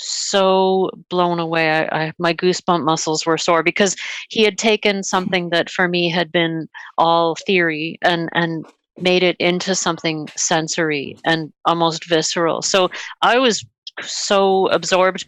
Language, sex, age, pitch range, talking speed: English, female, 40-59, 165-195 Hz, 140 wpm